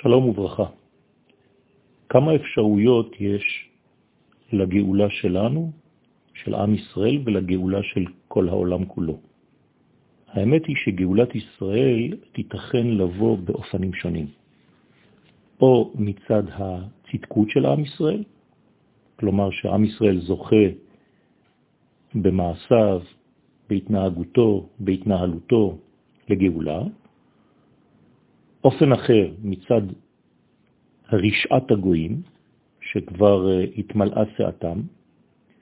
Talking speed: 75 wpm